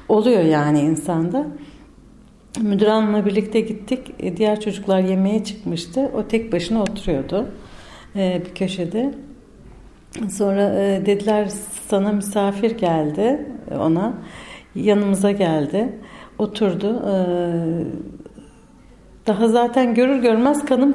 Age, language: 60-79, Turkish